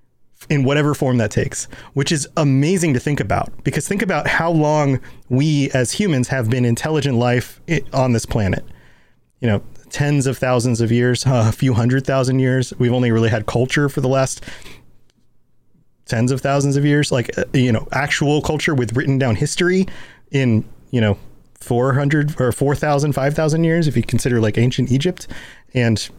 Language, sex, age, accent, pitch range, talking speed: English, male, 30-49, American, 120-145 Hz, 180 wpm